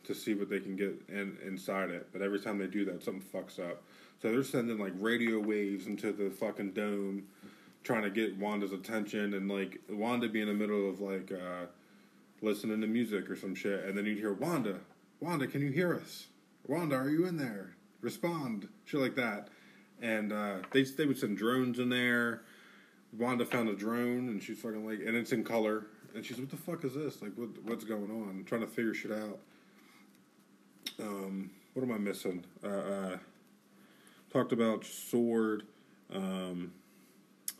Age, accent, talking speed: 20-39, American, 190 wpm